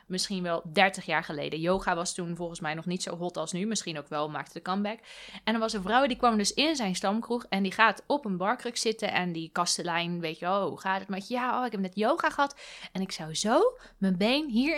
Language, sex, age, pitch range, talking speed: Dutch, female, 20-39, 180-230 Hz, 265 wpm